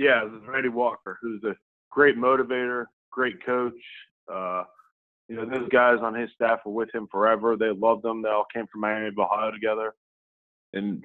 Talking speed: 180 wpm